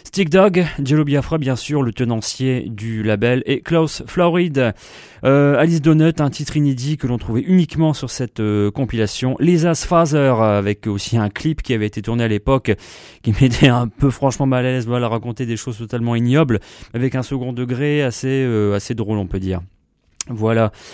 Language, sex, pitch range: French, male, 120-160 Hz